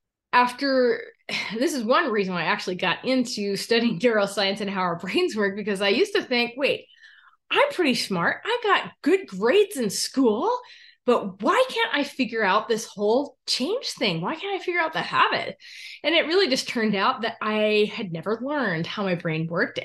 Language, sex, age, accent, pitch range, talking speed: English, female, 20-39, American, 190-275 Hz, 195 wpm